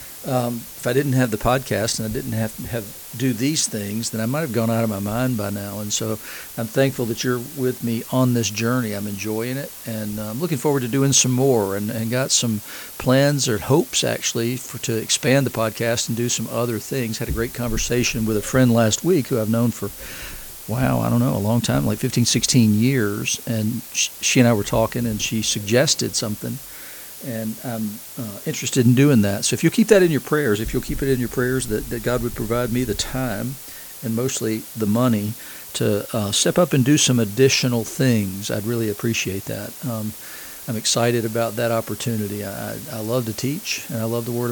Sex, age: male, 50-69